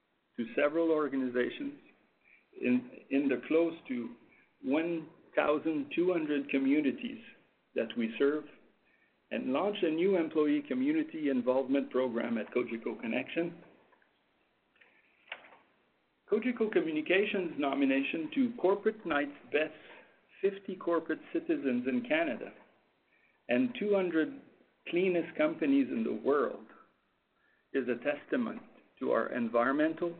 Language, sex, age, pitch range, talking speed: English, male, 60-79, 130-210 Hz, 95 wpm